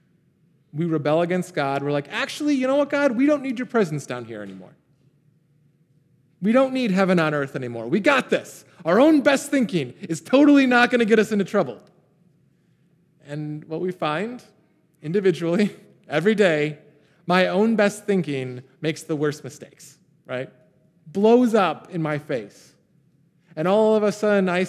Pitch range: 150-205 Hz